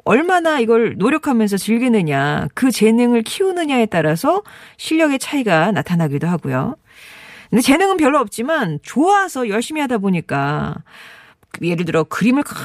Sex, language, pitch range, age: female, Korean, 170-280 Hz, 40-59